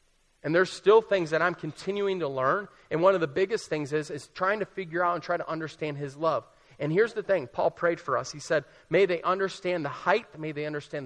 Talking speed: 245 wpm